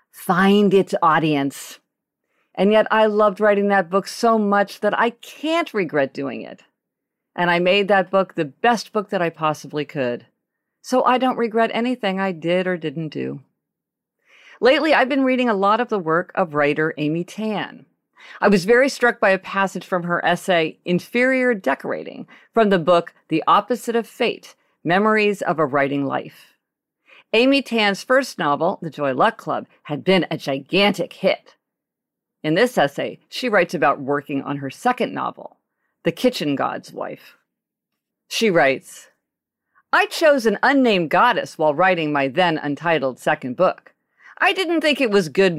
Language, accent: English, American